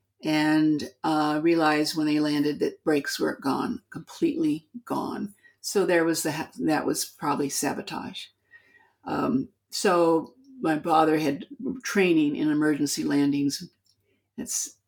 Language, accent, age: English, American, 50-69